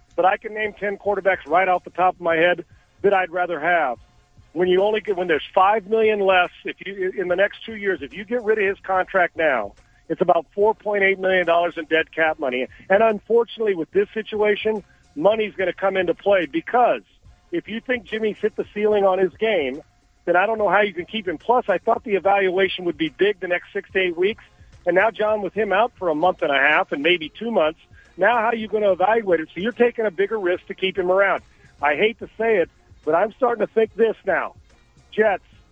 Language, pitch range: English, 175-215 Hz